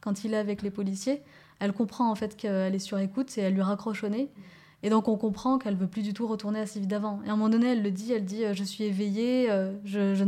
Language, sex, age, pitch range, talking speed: French, female, 20-39, 205-235 Hz, 300 wpm